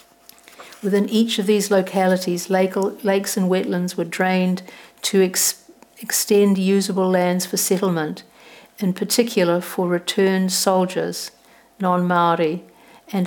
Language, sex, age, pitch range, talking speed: English, female, 60-79, 180-200 Hz, 105 wpm